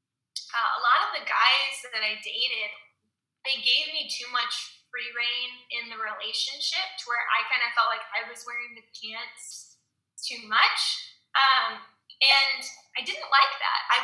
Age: 10-29